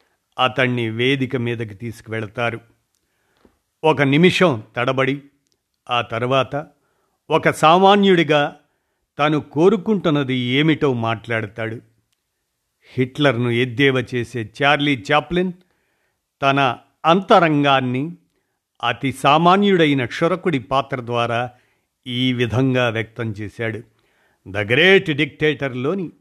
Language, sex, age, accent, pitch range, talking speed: Telugu, male, 50-69, native, 120-145 Hz, 80 wpm